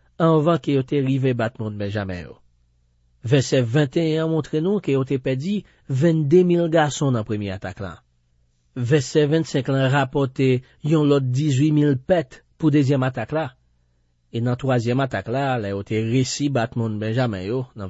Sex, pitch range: male, 95-140 Hz